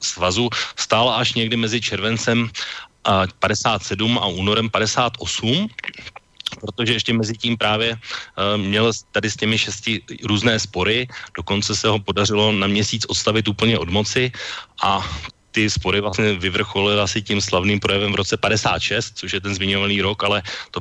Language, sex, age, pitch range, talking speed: Slovak, male, 30-49, 95-110 Hz, 145 wpm